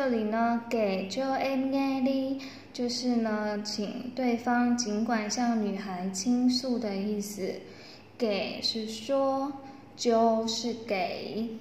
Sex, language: female, Vietnamese